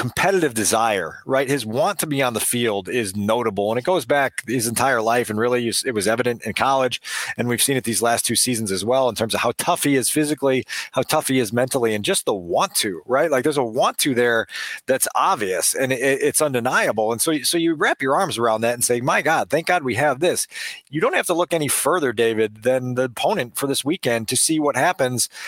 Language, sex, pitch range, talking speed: English, male, 130-175 Hz, 240 wpm